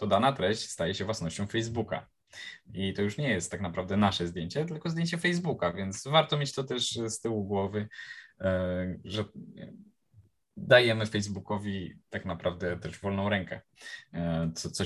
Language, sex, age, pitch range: Polish, male, 20-39, 100-130 Hz